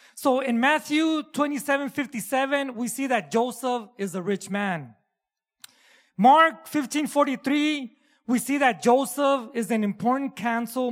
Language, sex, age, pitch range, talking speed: English, male, 30-49, 230-285 Hz, 120 wpm